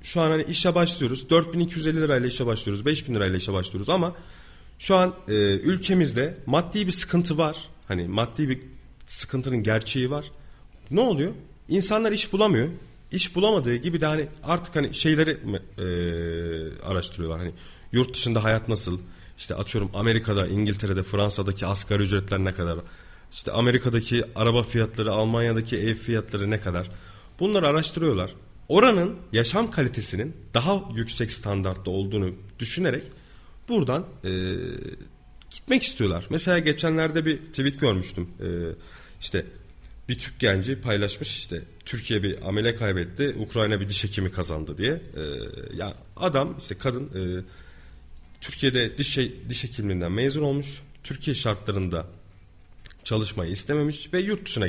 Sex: male